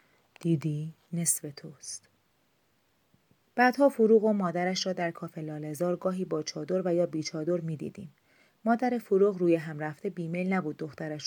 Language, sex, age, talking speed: Persian, female, 30-49, 140 wpm